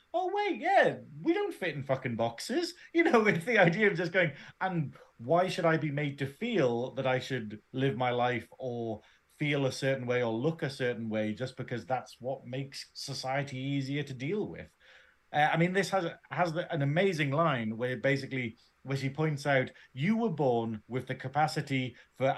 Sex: male